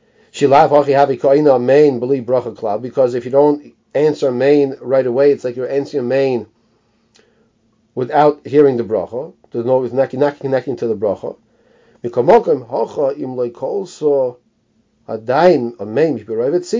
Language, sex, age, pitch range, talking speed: English, male, 40-59, 125-150 Hz, 100 wpm